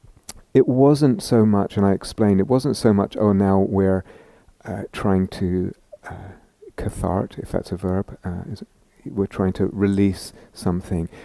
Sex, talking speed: male, 155 wpm